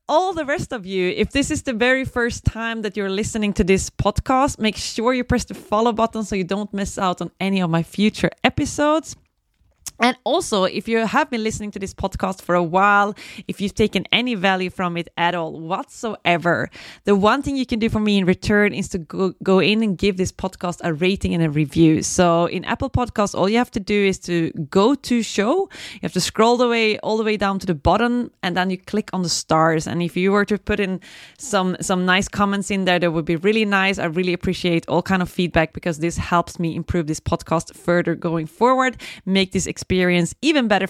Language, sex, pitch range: English, female, 175-225 Hz